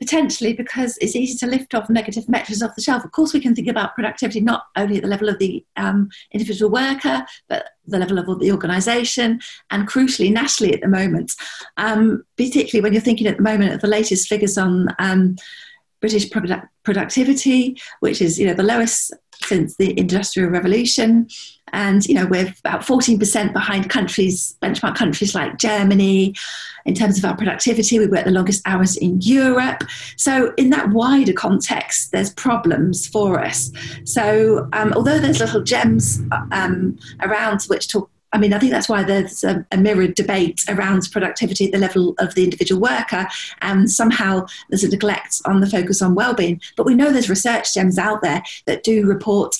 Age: 50-69